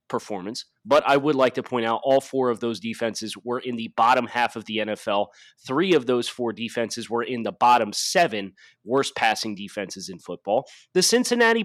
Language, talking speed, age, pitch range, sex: English, 195 wpm, 30-49, 110-145 Hz, male